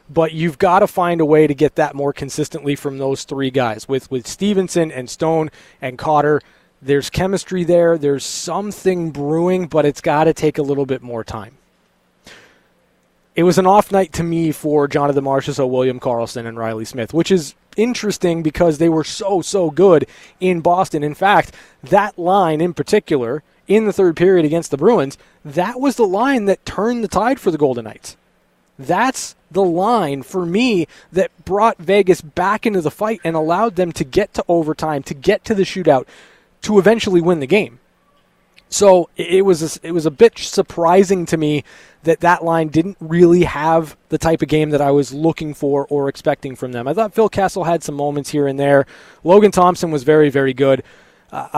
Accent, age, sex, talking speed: American, 20-39, male, 195 wpm